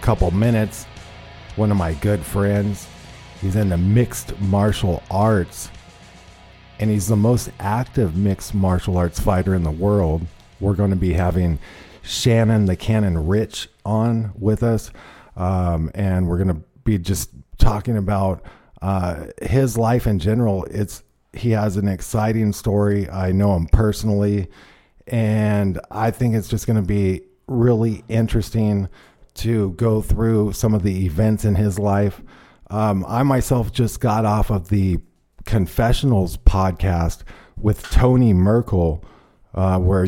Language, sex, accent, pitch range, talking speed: English, male, American, 95-110 Hz, 140 wpm